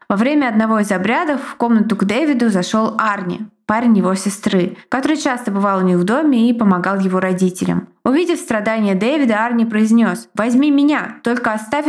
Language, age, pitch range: Russian, 20-39, 195-245 Hz